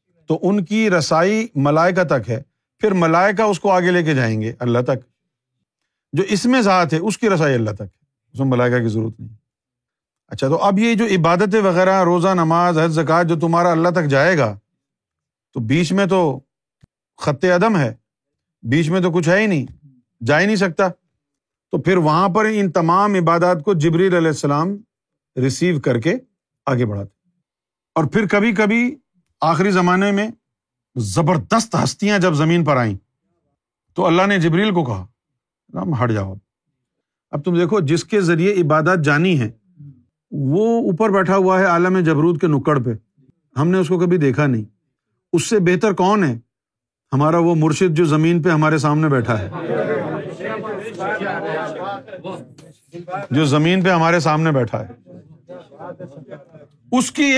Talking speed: 155 wpm